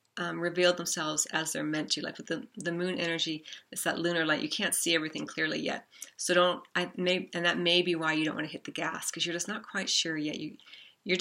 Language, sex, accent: English, female, American